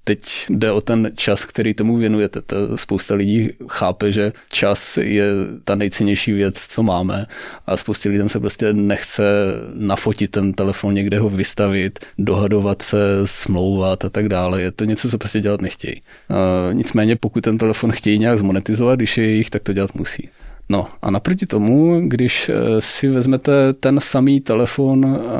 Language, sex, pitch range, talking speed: Slovak, male, 100-120 Hz, 165 wpm